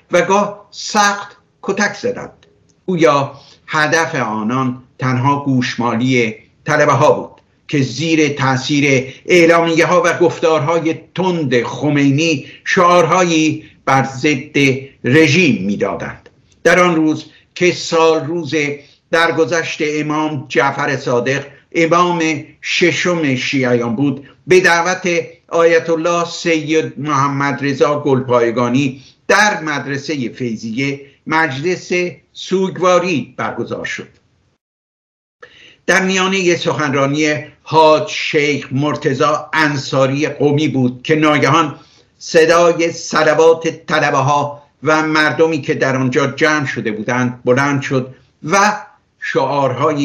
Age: 60-79